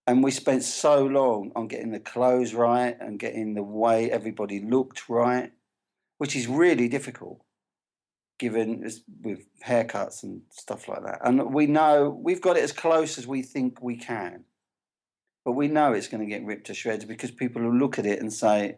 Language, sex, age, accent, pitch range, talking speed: English, male, 40-59, British, 120-150 Hz, 190 wpm